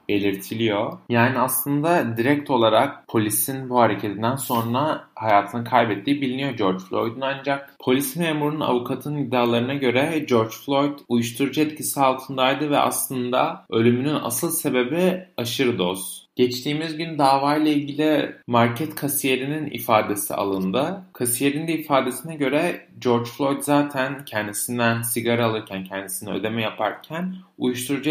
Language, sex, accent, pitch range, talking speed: Turkish, male, native, 115-145 Hz, 115 wpm